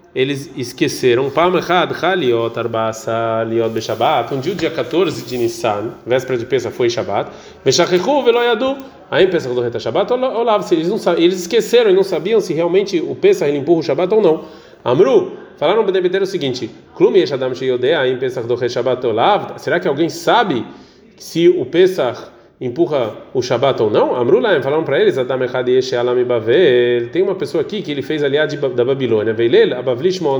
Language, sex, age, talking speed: Portuguese, male, 30-49, 130 wpm